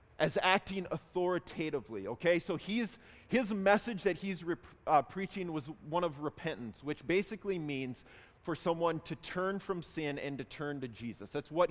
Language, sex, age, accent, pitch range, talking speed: English, male, 30-49, American, 145-190 Hz, 170 wpm